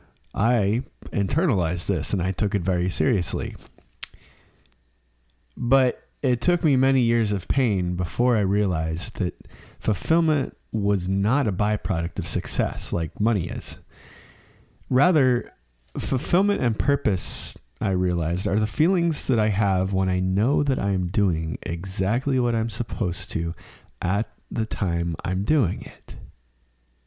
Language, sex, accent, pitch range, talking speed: English, male, American, 90-120 Hz, 135 wpm